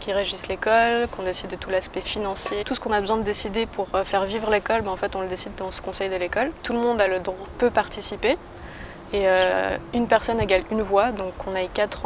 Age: 20-39